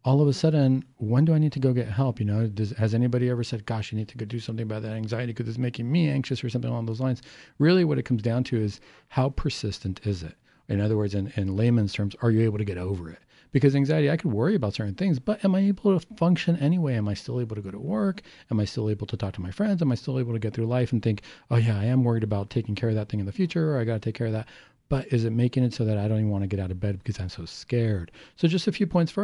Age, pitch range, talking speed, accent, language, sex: 40-59, 110-135 Hz, 315 wpm, American, English, male